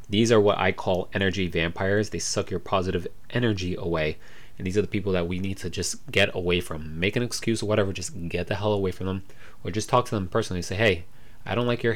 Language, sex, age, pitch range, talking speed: English, male, 30-49, 85-115 Hz, 250 wpm